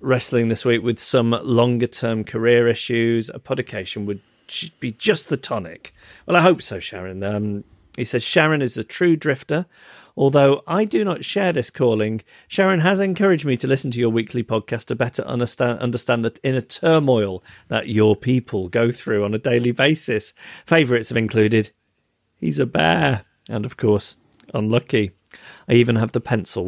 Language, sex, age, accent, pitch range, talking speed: English, male, 40-59, British, 110-140 Hz, 170 wpm